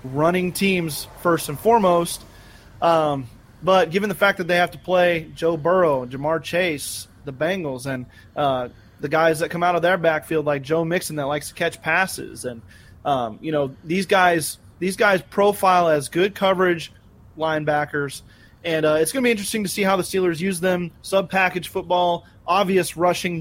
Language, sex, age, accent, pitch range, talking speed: English, male, 30-49, American, 135-185 Hz, 180 wpm